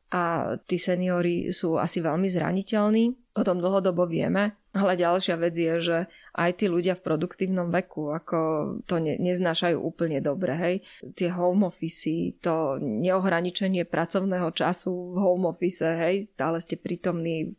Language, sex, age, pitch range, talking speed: Slovak, female, 20-39, 170-195 Hz, 150 wpm